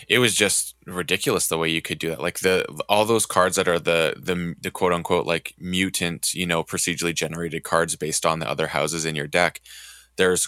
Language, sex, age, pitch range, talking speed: English, male, 20-39, 80-95 Hz, 220 wpm